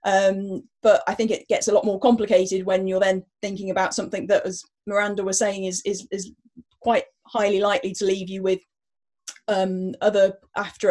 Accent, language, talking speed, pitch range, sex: British, English, 185 wpm, 185-215 Hz, female